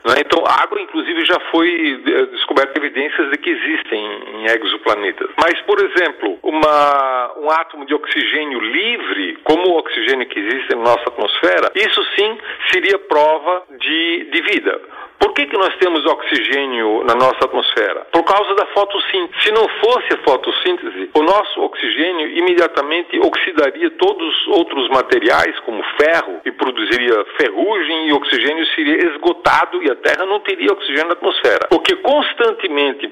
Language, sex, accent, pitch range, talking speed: Portuguese, male, Brazilian, 285-410 Hz, 150 wpm